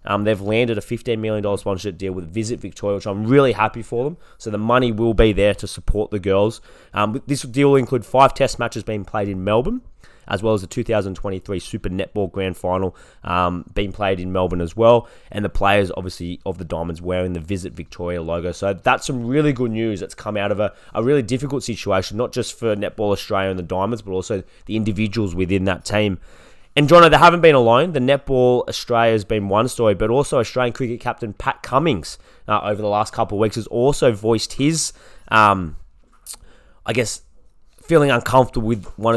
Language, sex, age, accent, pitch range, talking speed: English, male, 20-39, Australian, 95-120 Hz, 210 wpm